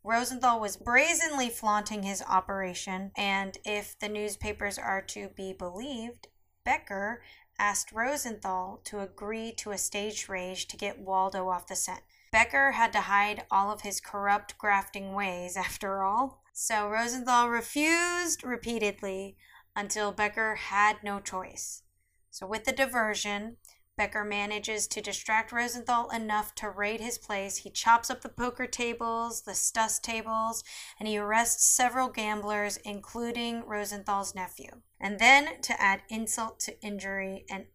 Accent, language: American, English